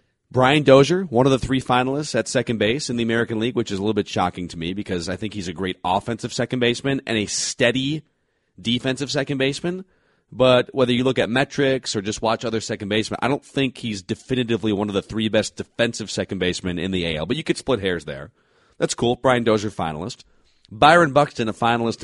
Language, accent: English, American